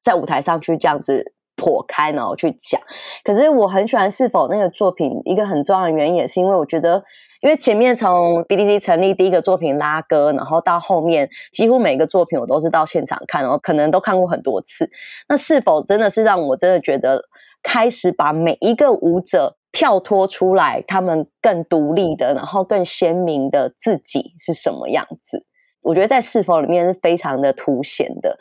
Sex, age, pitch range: female, 20-39, 165-220 Hz